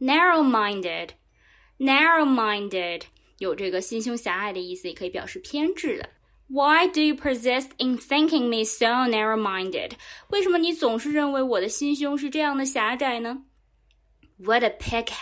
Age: 20-39